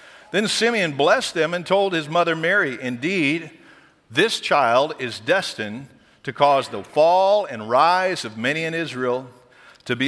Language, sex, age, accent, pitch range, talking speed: English, male, 50-69, American, 130-195 Hz, 155 wpm